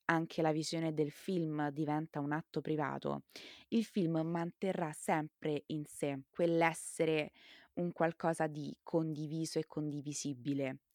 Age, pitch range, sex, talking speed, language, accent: 20-39, 150-190 Hz, female, 120 wpm, Italian, native